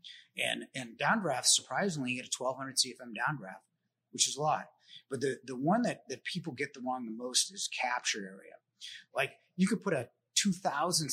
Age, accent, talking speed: 30-49, American, 190 wpm